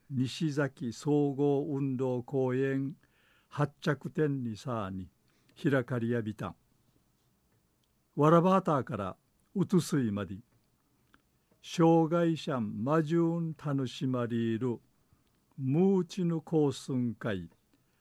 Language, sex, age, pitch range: Japanese, male, 50-69, 125-155 Hz